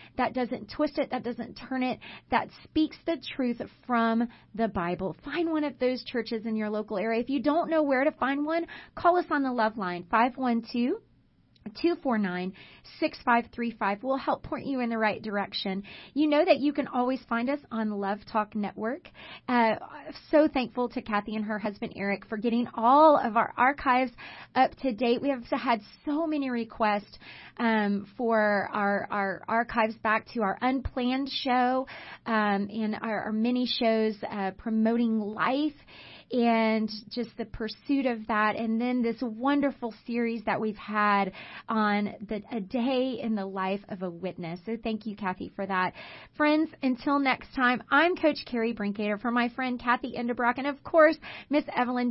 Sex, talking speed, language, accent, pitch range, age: female, 175 wpm, English, American, 215-265 Hz, 30-49